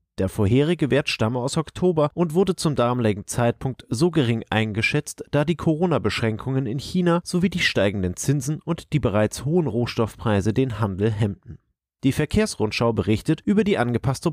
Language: German